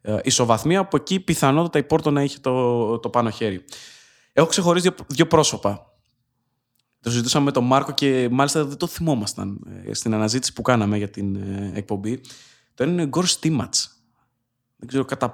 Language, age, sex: Greek, 20-39, male